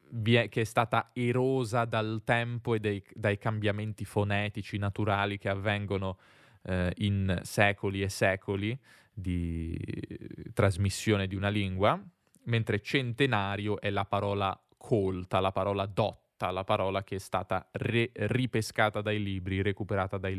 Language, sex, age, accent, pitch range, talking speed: Italian, male, 20-39, native, 100-120 Hz, 125 wpm